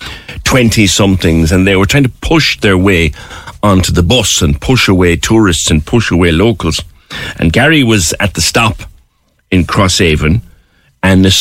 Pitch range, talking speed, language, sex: 80-105 Hz, 165 wpm, English, male